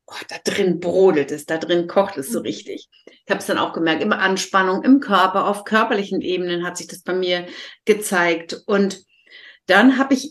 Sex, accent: female, German